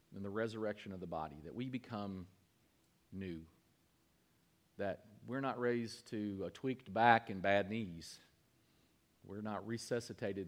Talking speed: 135 wpm